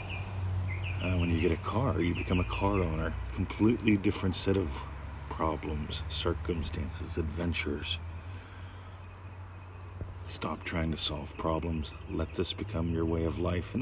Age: 40-59